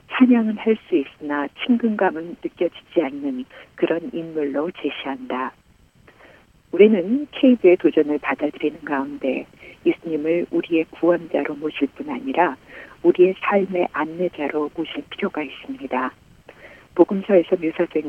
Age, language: 50-69, Korean